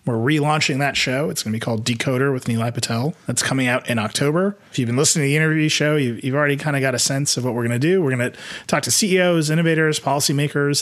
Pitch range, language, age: 120-155 Hz, English, 30-49